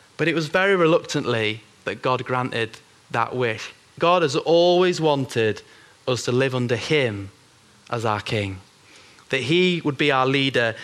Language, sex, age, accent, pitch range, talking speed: English, male, 30-49, British, 125-165 Hz, 155 wpm